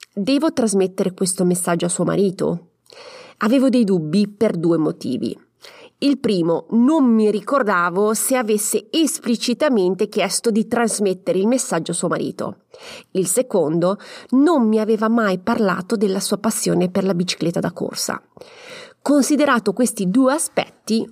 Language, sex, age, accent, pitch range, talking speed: Italian, female, 30-49, native, 190-260 Hz, 135 wpm